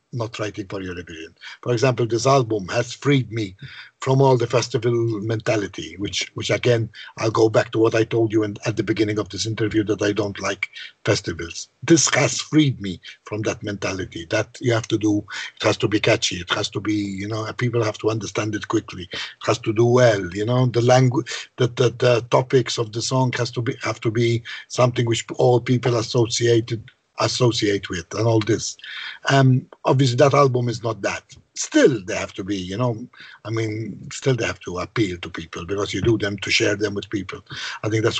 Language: English